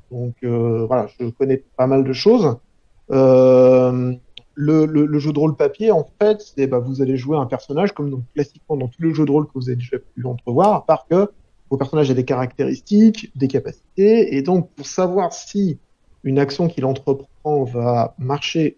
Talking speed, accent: 190 wpm, French